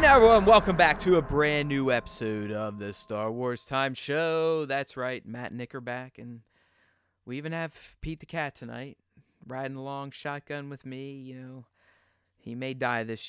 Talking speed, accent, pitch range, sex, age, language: 170 wpm, American, 105-140 Hz, male, 30-49, English